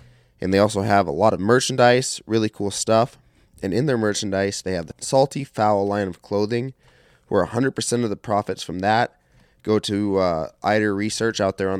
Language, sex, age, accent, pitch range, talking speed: English, male, 20-39, American, 95-115 Hz, 195 wpm